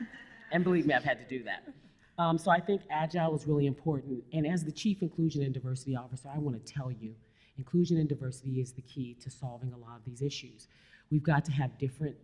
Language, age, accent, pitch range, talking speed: English, 40-59, American, 125-145 Hz, 230 wpm